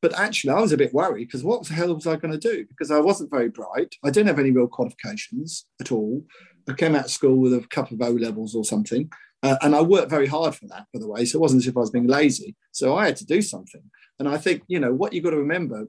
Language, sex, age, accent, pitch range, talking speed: English, male, 50-69, British, 125-160 Hz, 290 wpm